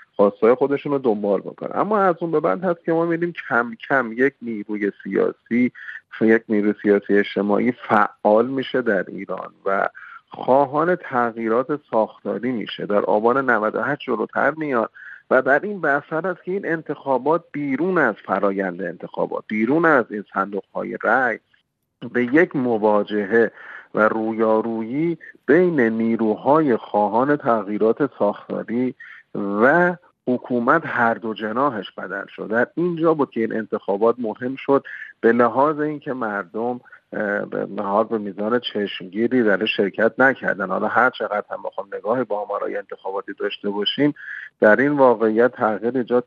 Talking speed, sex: 135 wpm, male